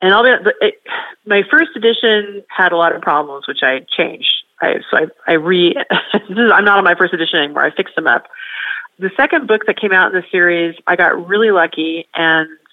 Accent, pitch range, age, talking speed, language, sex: American, 160-200 Hz, 30-49, 205 wpm, English, female